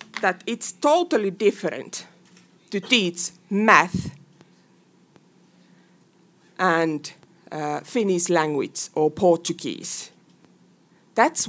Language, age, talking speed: Portuguese, 50-69, 75 wpm